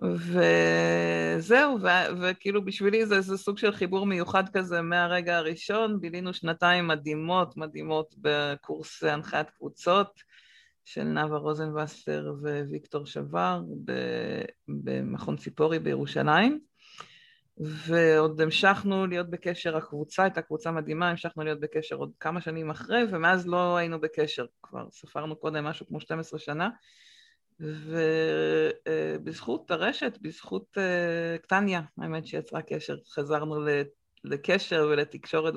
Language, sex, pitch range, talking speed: Hebrew, female, 150-190 Hz, 115 wpm